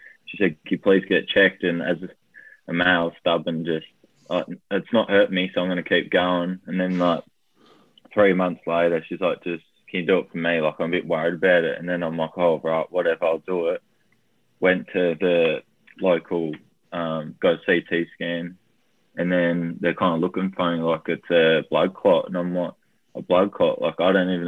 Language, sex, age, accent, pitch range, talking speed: English, male, 20-39, Australian, 85-90 Hz, 215 wpm